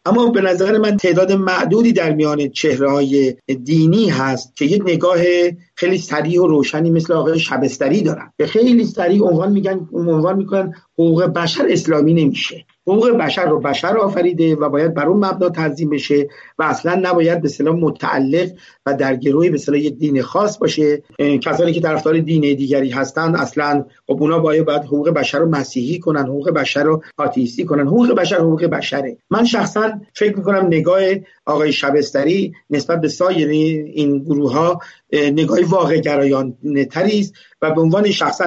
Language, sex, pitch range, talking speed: Persian, male, 145-180 Hz, 160 wpm